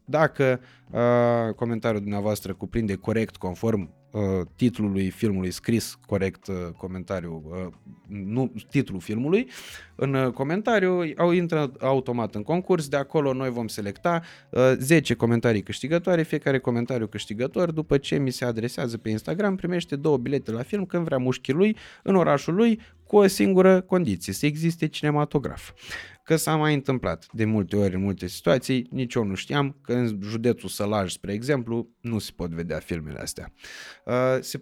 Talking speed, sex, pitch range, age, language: 145 wpm, male, 110-145 Hz, 20-39, Romanian